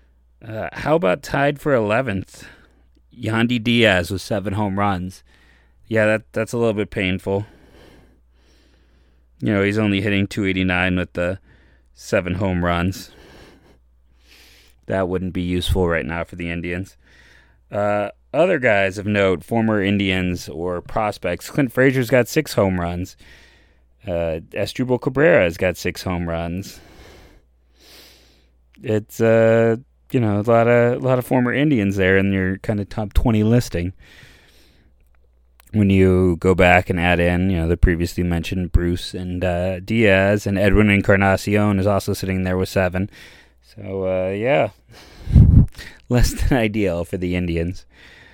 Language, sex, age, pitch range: English, male, 30-49, 85-105 Hz